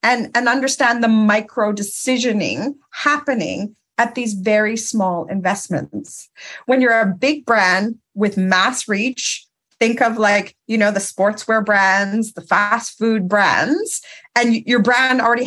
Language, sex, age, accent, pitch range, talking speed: English, female, 40-59, American, 205-260 Hz, 140 wpm